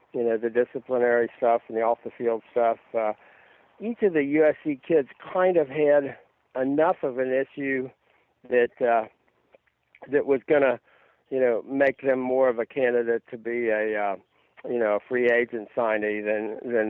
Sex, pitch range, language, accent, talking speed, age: male, 115-135 Hz, English, American, 170 wpm, 60-79